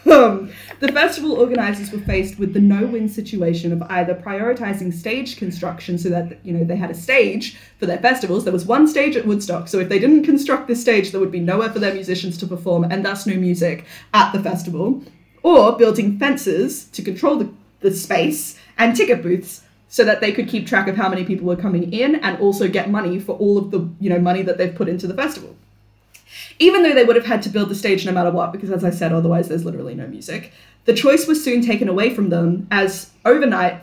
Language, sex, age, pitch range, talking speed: English, female, 20-39, 180-240 Hz, 230 wpm